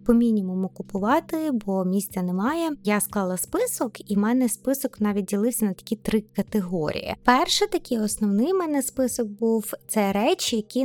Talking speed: 165 wpm